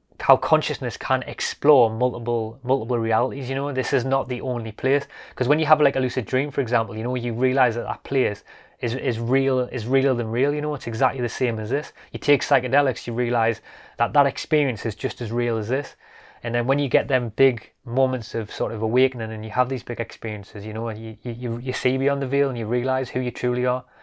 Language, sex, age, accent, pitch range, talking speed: English, male, 20-39, British, 115-135 Hz, 240 wpm